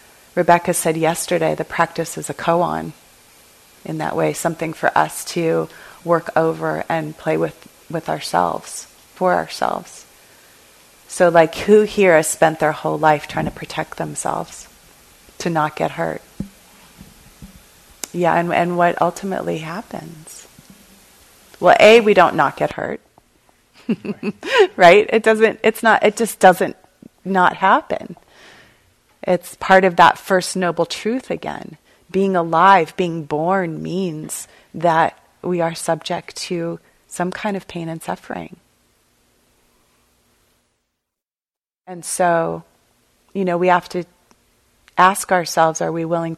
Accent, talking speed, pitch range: American, 130 wpm, 160-185 Hz